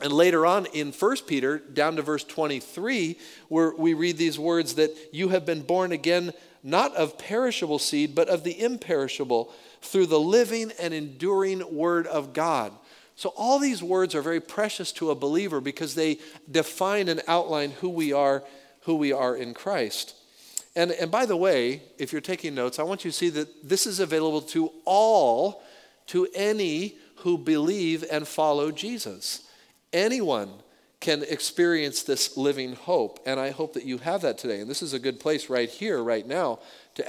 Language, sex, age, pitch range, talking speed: English, male, 50-69, 135-175 Hz, 180 wpm